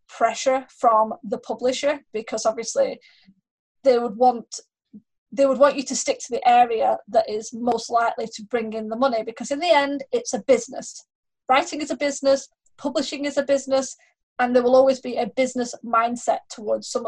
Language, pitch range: English, 230-275 Hz